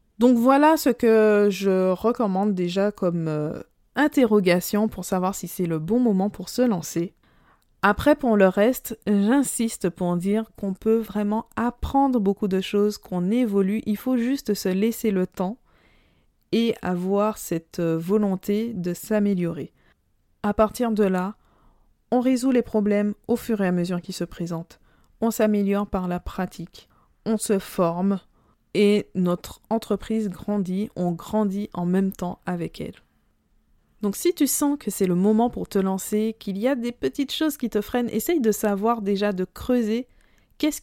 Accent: French